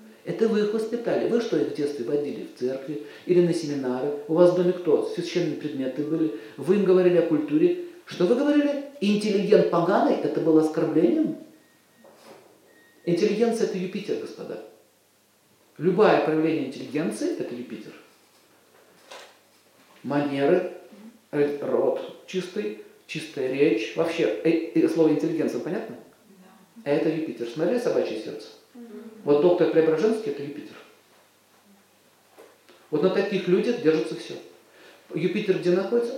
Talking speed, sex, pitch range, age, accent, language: 125 wpm, male, 155-220 Hz, 40-59, native, Russian